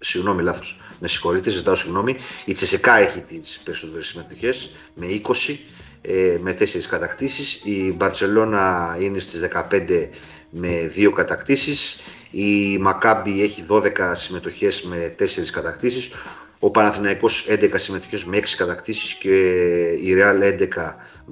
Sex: male